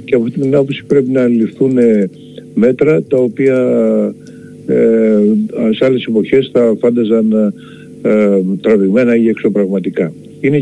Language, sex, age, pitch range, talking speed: Greek, male, 60-79, 100-130 Hz, 115 wpm